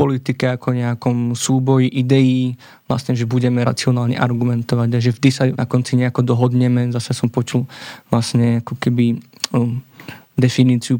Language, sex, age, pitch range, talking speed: Slovak, male, 20-39, 125-135 Hz, 140 wpm